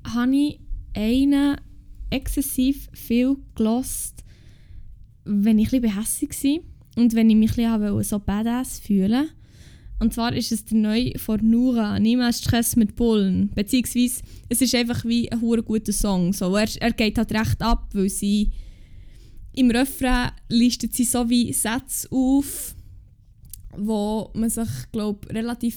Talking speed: 135 wpm